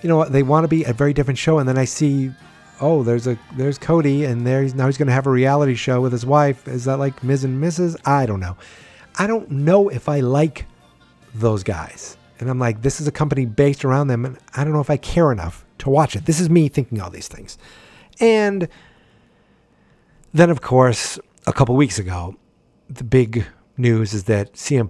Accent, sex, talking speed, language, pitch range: American, male, 220 wpm, English, 100-140 Hz